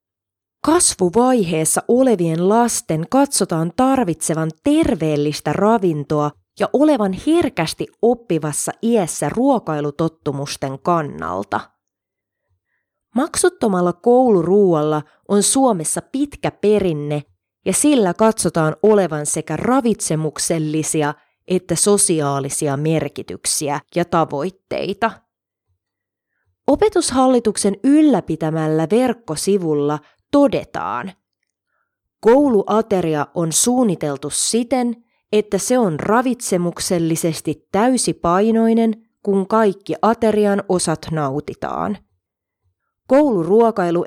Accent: native